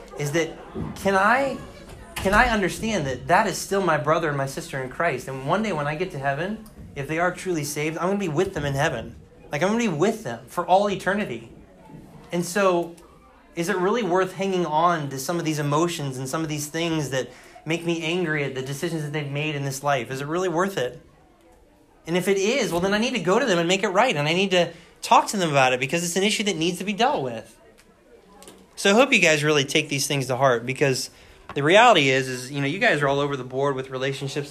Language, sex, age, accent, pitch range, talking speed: English, male, 20-39, American, 135-185 Hz, 255 wpm